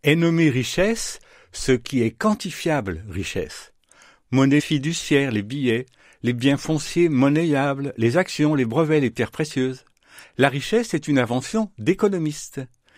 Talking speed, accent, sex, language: 155 wpm, French, male, French